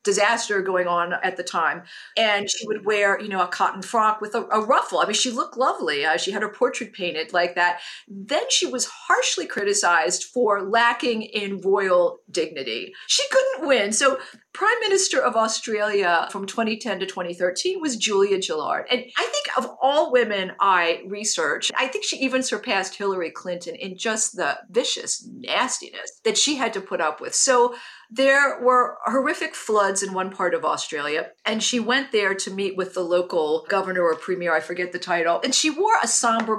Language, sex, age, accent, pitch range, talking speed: English, female, 50-69, American, 185-250 Hz, 190 wpm